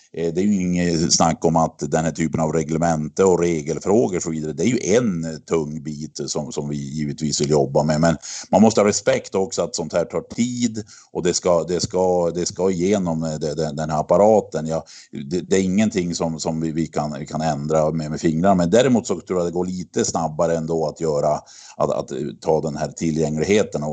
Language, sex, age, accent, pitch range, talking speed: Swedish, male, 50-69, native, 75-90 Hz, 220 wpm